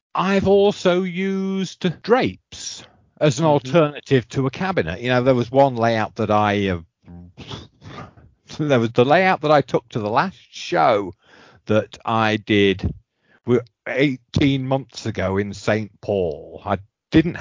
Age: 40-59